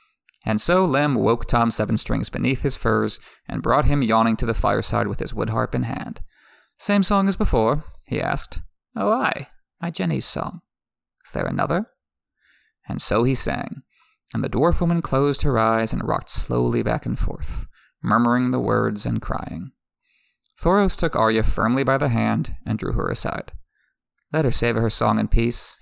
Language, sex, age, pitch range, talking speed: English, male, 20-39, 115-160 Hz, 175 wpm